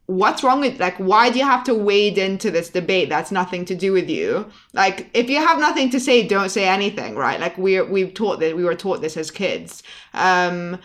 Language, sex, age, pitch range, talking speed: English, female, 20-39, 185-215 Hz, 230 wpm